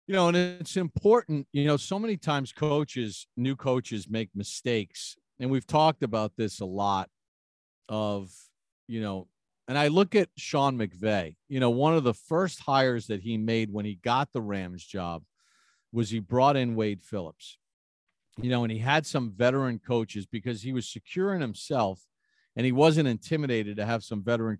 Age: 50-69